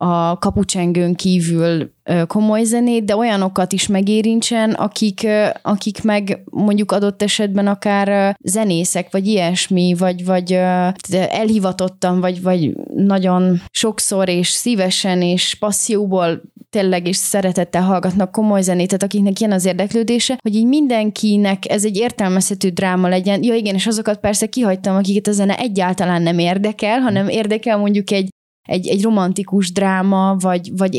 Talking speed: 135 wpm